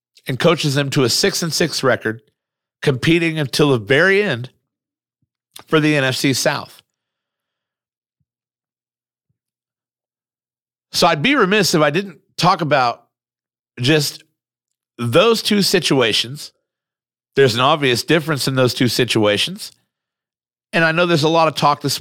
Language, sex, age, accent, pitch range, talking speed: English, male, 50-69, American, 115-165 Hz, 130 wpm